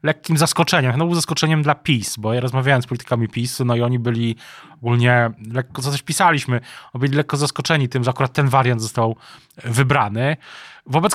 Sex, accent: male, native